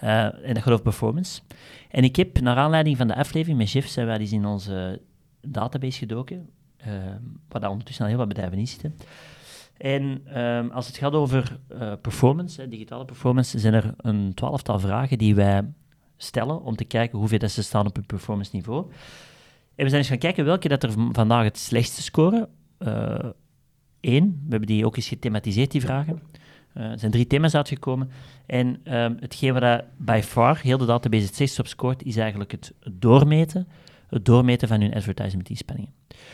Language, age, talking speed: Dutch, 30-49, 185 wpm